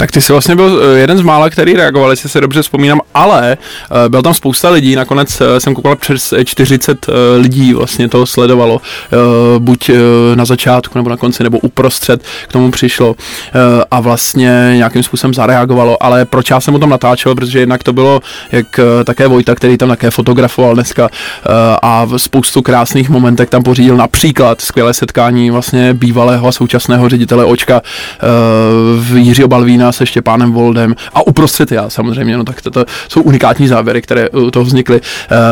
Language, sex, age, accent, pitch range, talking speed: Czech, male, 20-39, native, 120-130 Hz, 170 wpm